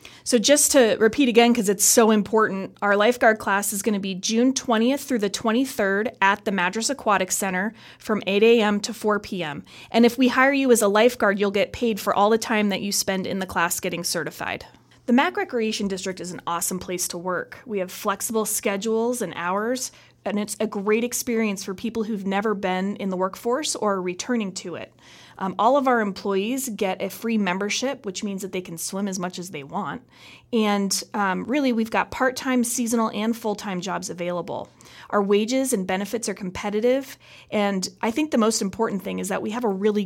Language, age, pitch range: English, 30-49, 190-230 Hz